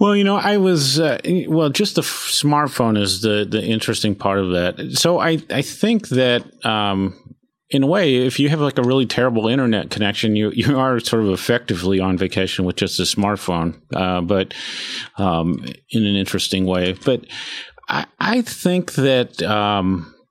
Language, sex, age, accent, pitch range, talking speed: English, male, 40-59, American, 100-130 Hz, 180 wpm